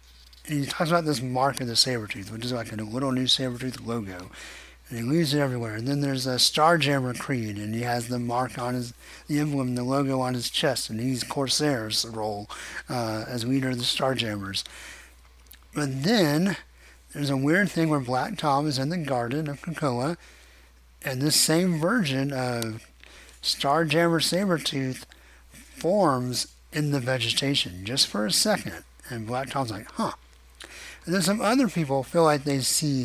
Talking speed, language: 180 wpm, English